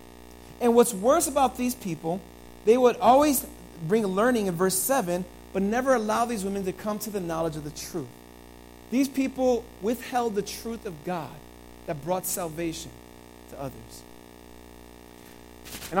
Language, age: English, 40-59